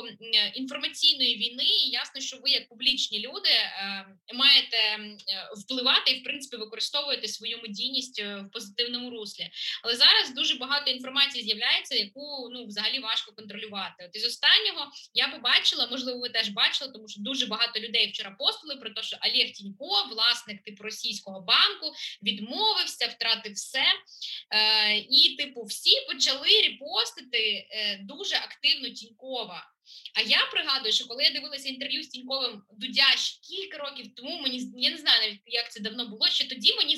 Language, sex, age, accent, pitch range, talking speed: Ukrainian, female, 20-39, native, 225-285 Hz, 150 wpm